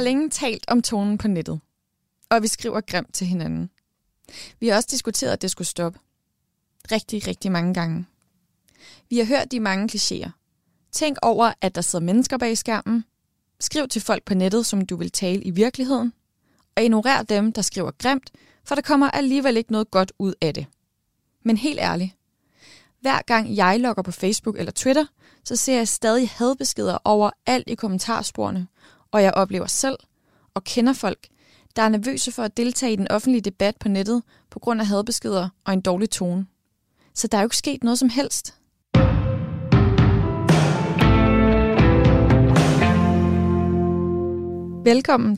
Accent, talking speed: native, 165 wpm